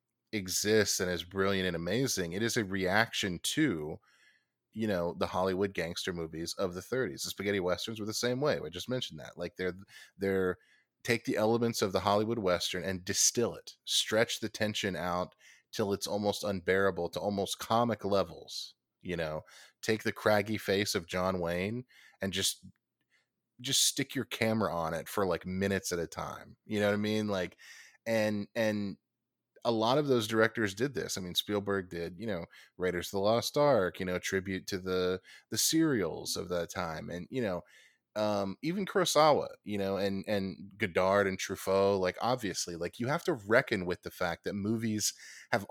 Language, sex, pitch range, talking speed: English, male, 95-115 Hz, 185 wpm